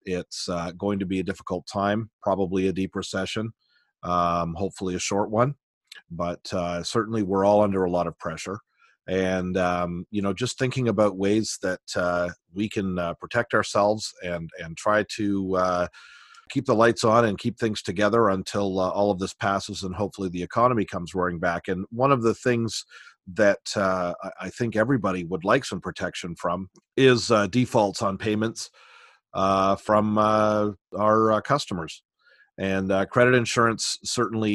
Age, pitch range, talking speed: 40-59, 90-110 Hz, 170 wpm